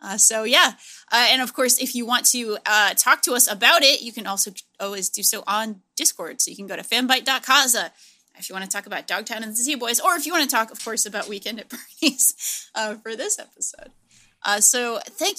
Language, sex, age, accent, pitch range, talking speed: English, female, 20-39, American, 215-285 Hz, 230 wpm